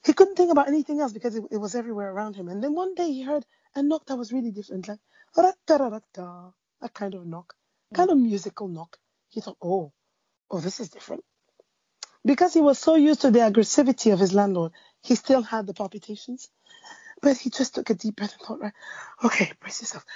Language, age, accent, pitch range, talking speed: English, 30-49, Nigerian, 200-290 Hz, 210 wpm